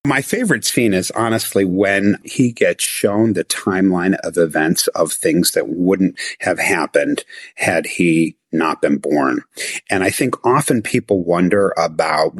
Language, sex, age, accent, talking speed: English, male, 50-69, American, 150 wpm